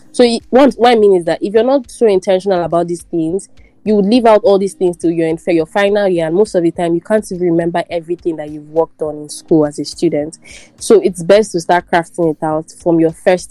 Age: 20-39